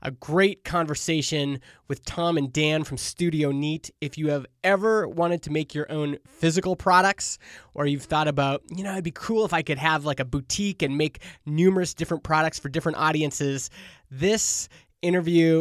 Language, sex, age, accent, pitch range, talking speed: English, male, 20-39, American, 145-180 Hz, 180 wpm